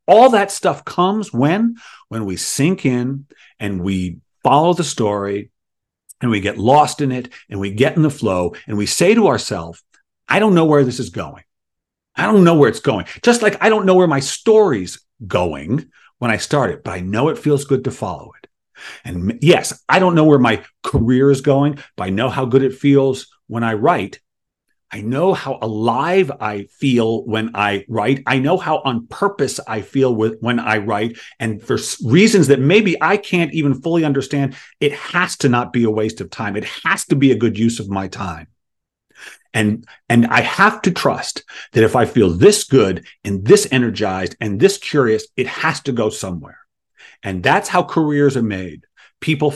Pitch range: 110-155 Hz